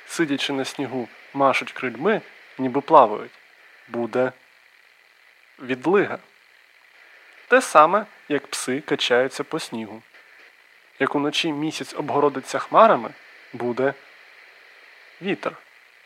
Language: Ukrainian